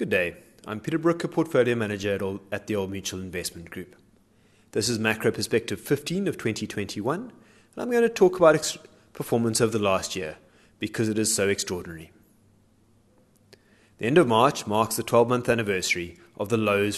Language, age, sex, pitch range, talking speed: English, 30-49, male, 100-140 Hz, 170 wpm